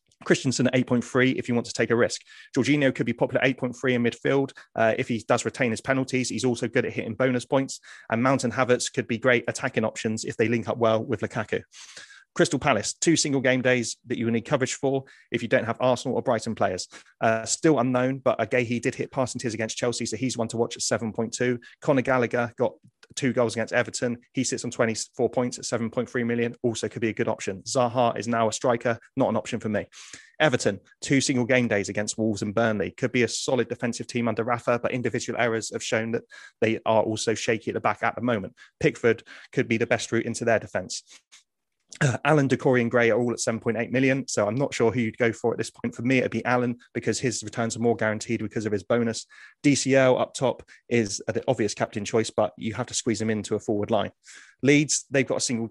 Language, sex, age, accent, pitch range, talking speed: English, male, 30-49, British, 115-130 Hz, 230 wpm